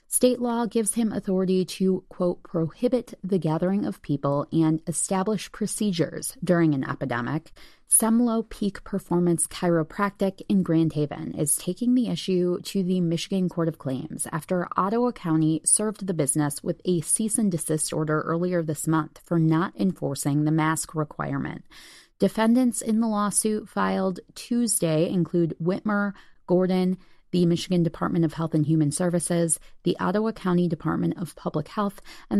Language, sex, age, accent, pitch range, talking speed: English, female, 20-39, American, 160-195 Hz, 150 wpm